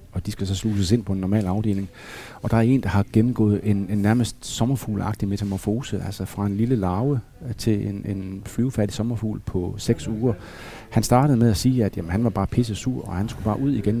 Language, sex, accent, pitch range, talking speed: Danish, male, native, 105-130 Hz, 225 wpm